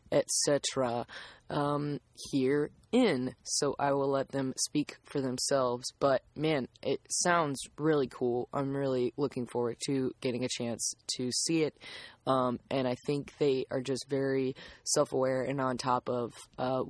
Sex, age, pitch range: female, 20-39, 130-145 Hz